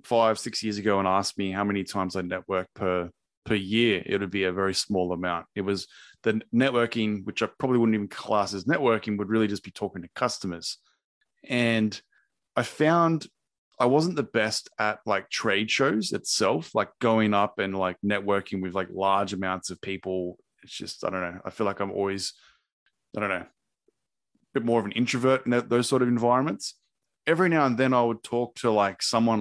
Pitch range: 100-120 Hz